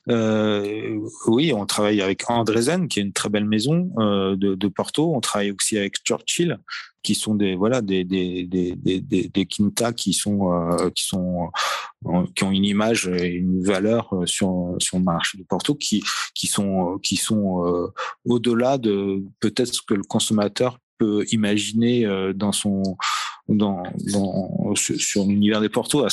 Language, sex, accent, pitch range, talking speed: French, male, French, 95-110 Hz, 175 wpm